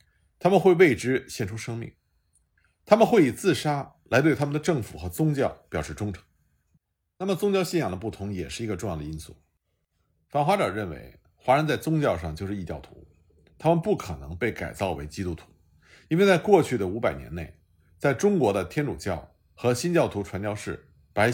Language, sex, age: Chinese, male, 50-69